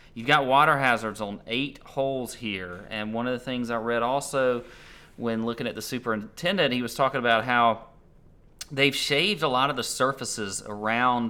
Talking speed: 180 wpm